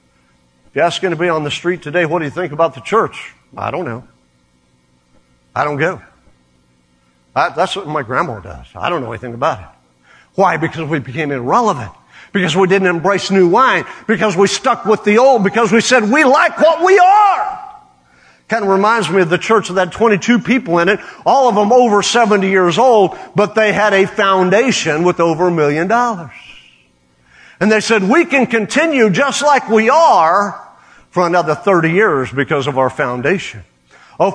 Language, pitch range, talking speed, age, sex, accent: English, 165-230 Hz, 185 wpm, 50-69, male, American